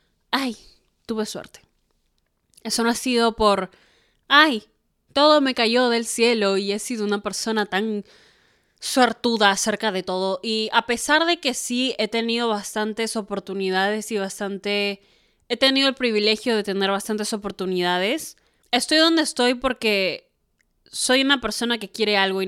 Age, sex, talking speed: 20-39, female, 145 wpm